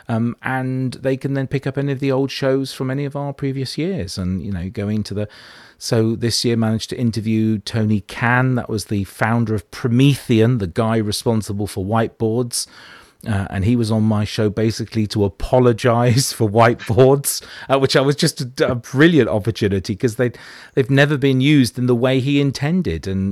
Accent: British